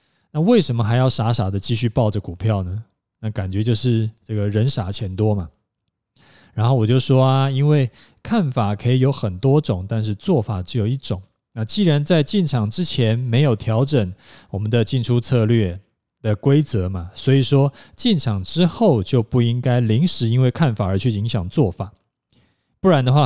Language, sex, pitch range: Chinese, male, 105-135 Hz